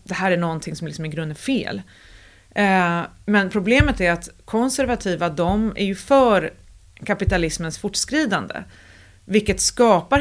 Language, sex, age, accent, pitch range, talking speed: Swedish, female, 30-49, native, 160-205 Hz, 140 wpm